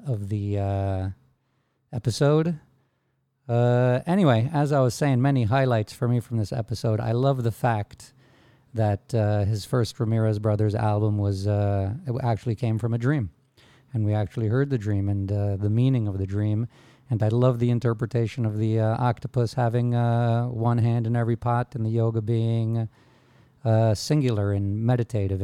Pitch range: 105-130 Hz